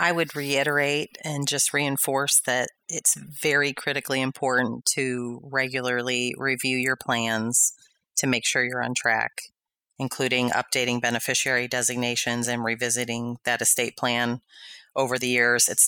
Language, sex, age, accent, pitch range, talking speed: English, female, 30-49, American, 120-135 Hz, 130 wpm